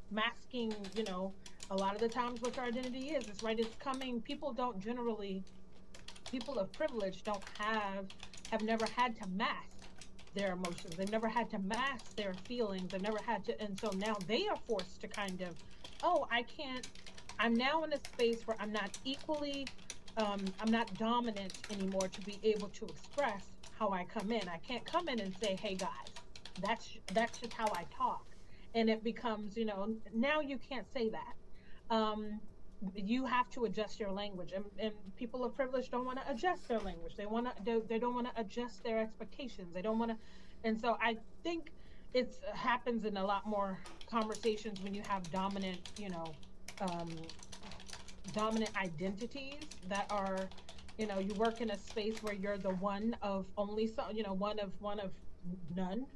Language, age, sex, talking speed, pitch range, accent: English, 30-49, female, 190 wpm, 200-240 Hz, American